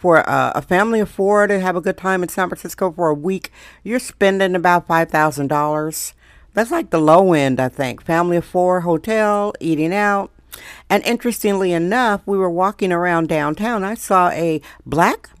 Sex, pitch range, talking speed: female, 160-200 Hz, 180 wpm